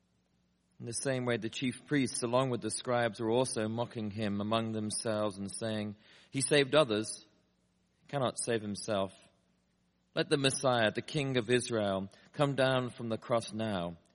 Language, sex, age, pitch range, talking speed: English, male, 40-59, 100-125 Hz, 160 wpm